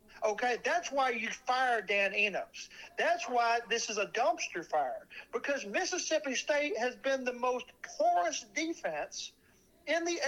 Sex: male